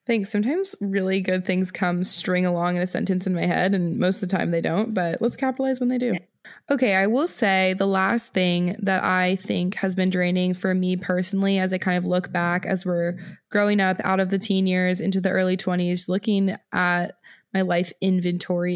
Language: English